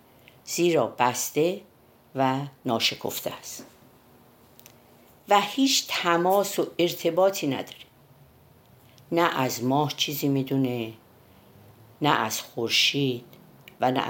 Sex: female